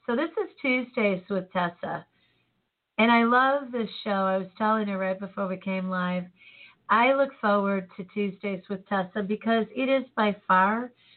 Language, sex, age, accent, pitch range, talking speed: English, female, 40-59, American, 180-210 Hz, 170 wpm